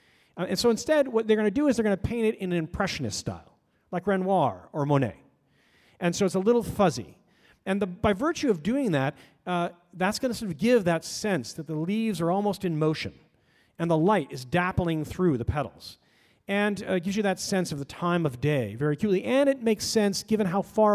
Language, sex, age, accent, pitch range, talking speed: English, male, 40-59, American, 145-210 Hz, 230 wpm